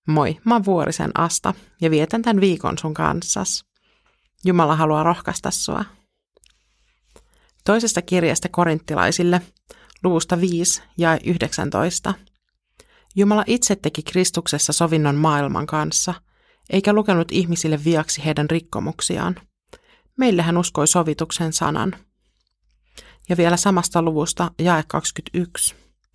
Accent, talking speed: native, 105 wpm